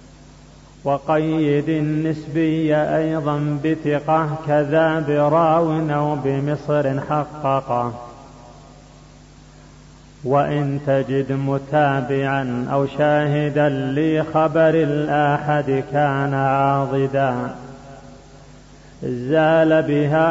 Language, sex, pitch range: Arabic, male, 135-155 Hz